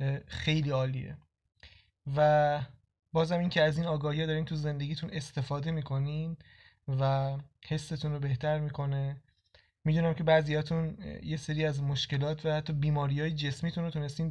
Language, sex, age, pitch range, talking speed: Persian, male, 20-39, 145-165 Hz, 140 wpm